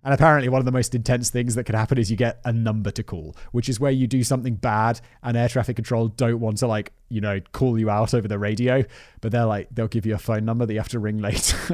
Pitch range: 110-145 Hz